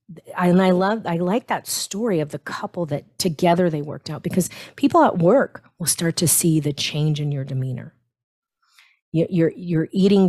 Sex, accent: female, American